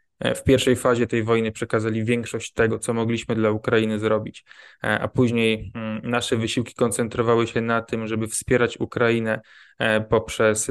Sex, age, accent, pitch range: male, 20-39, native, 110-125 Hz